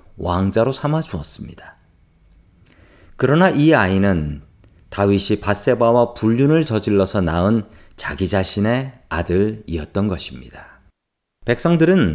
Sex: male